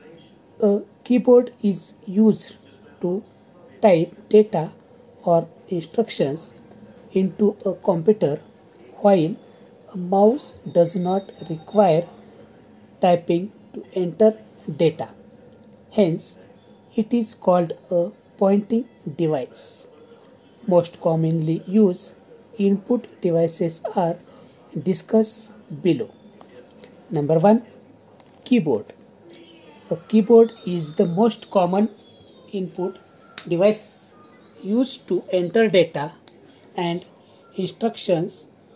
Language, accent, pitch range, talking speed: Marathi, native, 175-220 Hz, 85 wpm